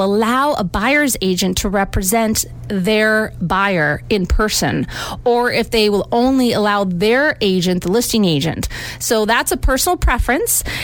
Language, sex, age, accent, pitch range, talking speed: English, female, 30-49, American, 195-240 Hz, 145 wpm